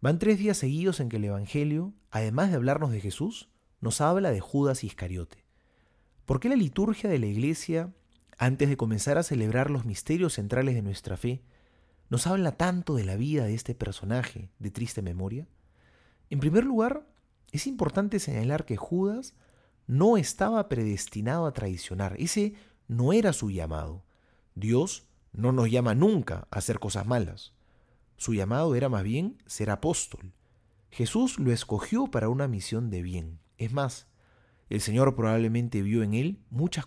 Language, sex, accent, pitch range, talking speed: English, male, Argentinian, 105-155 Hz, 160 wpm